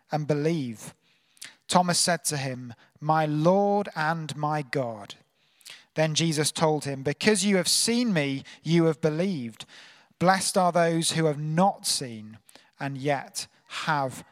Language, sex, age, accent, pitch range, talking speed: English, male, 30-49, British, 155-210 Hz, 140 wpm